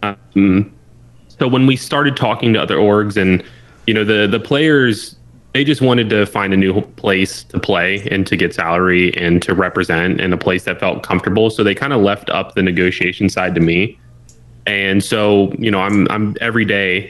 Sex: male